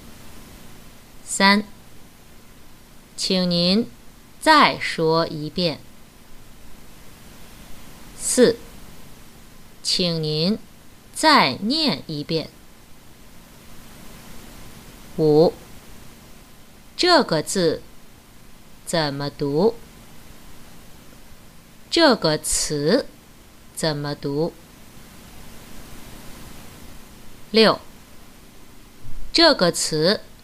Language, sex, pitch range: English, female, 145-220 Hz